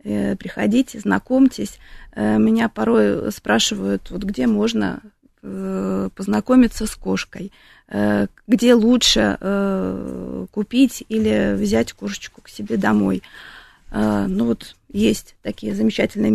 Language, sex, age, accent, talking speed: Russian, female, 20-39, native, 85 wpm